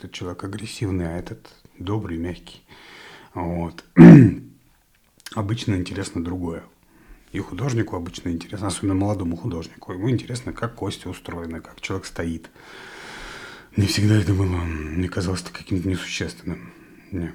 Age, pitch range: 30-49, 85-105 Hz